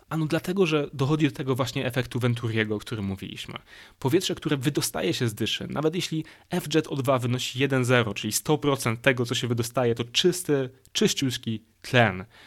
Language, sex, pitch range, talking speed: Polish, male, 115-140 Hz, 175 wpm